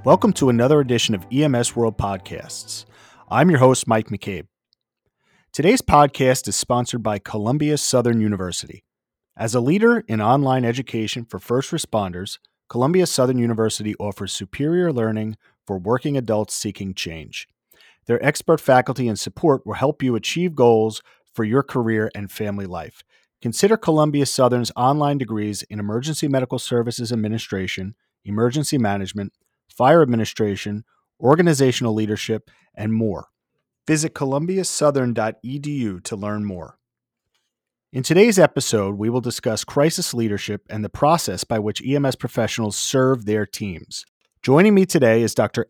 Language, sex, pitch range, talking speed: English, male, 105-140 Hz, 135 wpm